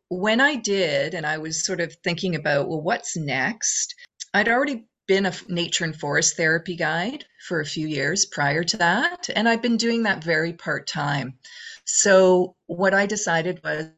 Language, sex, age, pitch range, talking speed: English, female, 40-59, 155-195 Hz, 175 wpm